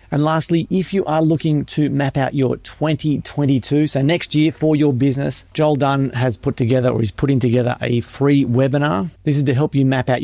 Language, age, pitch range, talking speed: English, 40-59, 115-145 Hz, 210 wpm